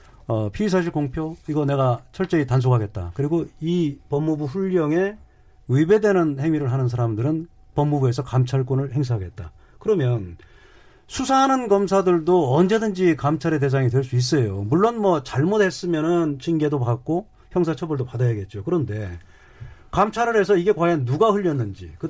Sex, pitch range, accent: male, 125-175 Hz, native